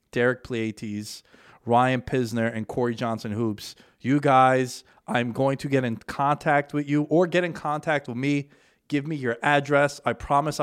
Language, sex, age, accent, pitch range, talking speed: English, male, 20-39, American, 105-130 Hz, 170 wpm